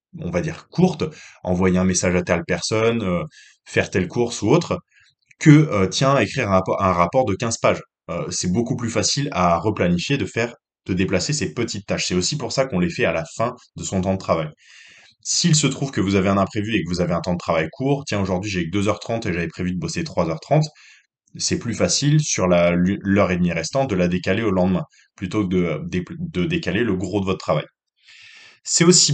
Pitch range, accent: 95-135 Hz, French